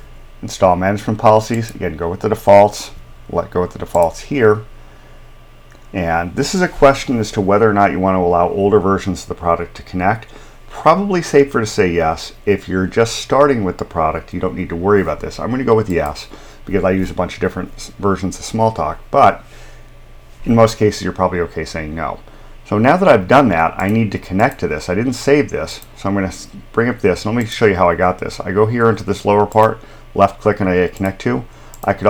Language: English